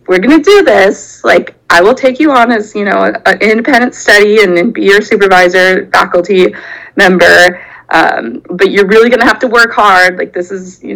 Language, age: English, 20-39